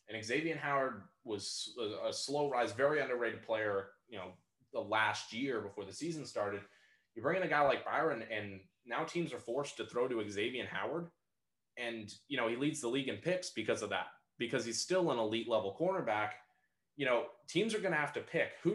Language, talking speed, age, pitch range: English, 210 wpm, 20-39, 105-145 Hz